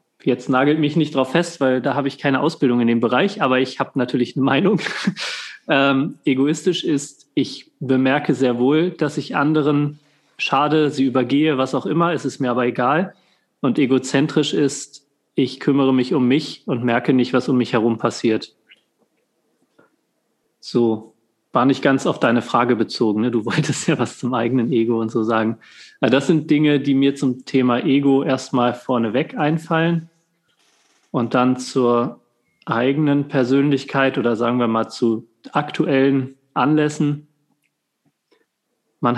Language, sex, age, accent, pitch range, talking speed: German, male, 30-49, German, 125-145 Hz, 155 wpm